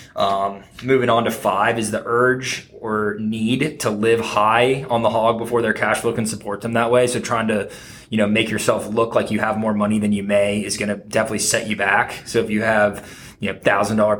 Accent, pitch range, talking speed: American, 105-115 Hz, 235 wpm